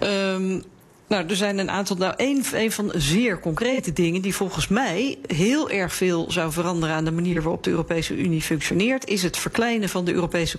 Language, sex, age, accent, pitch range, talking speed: Dutch, female, 40-59, Dutch, 175-215 Hz, 200 wpm